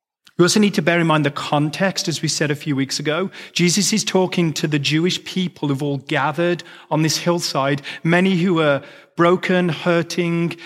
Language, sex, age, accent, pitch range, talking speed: English, male, 30-49, British, 140-175 Hz, 190 wpm